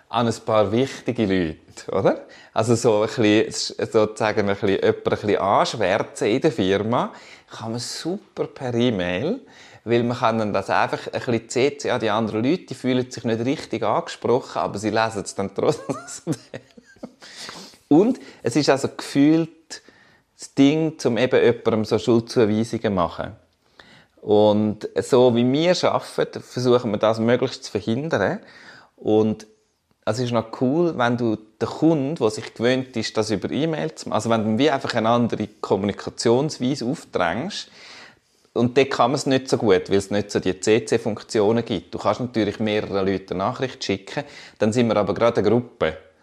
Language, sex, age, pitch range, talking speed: German, male, 30-49, 100-125 Hz, 170 wpm